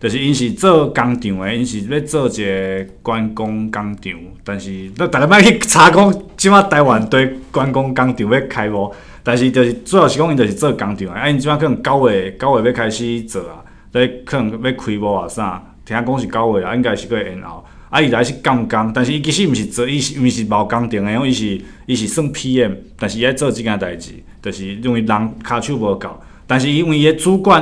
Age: 20-39